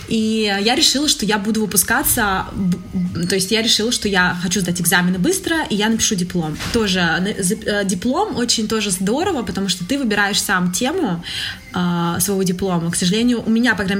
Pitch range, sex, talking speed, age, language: 190-235 Hz, female, 175 wpm, 20-39, Russian